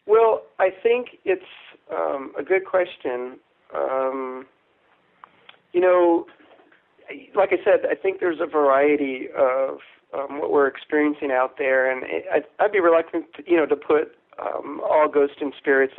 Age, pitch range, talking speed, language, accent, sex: 40-59, 130-155 Hz, 150 wpm, English, American, male